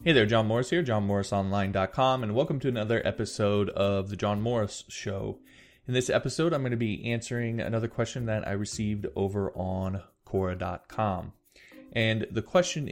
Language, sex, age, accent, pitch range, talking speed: English, male, 20-39, American, 95-115 Hz, 165 wpm